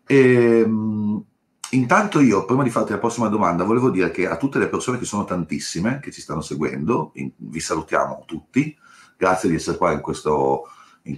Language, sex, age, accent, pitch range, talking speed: Italian, male, 40-59, native, 85-130 Hz, 175 wpm